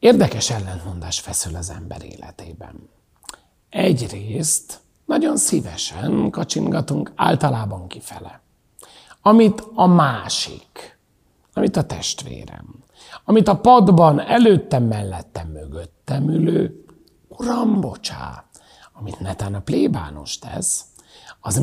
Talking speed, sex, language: 90 wpm, male, Hungarian